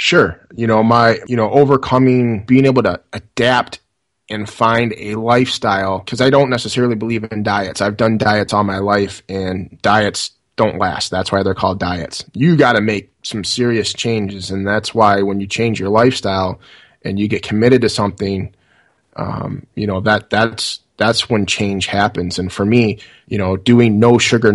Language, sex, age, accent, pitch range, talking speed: English, male, 20-39, American, 100-120 Hz, 185 wpm